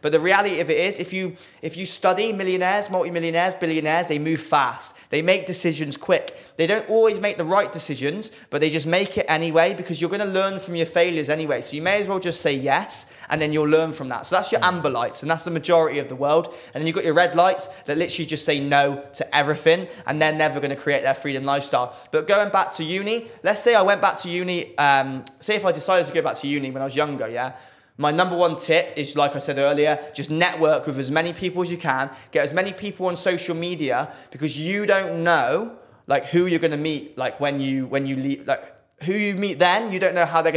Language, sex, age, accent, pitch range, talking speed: English, male, 20-39, British, 145-185 Hz, 250 wpm